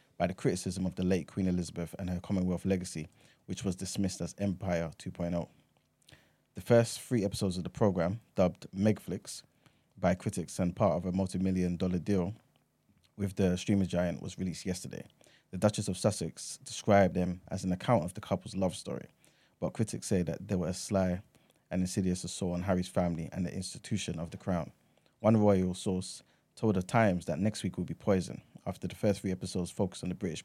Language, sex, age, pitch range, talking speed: English, male, 20-39, 90-100 Hz, 195 wpm